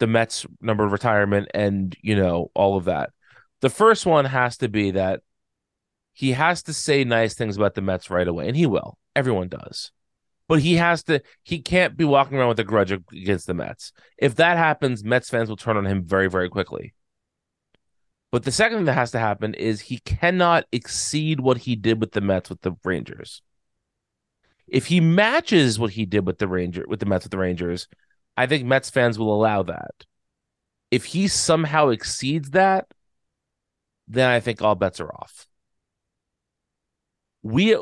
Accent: American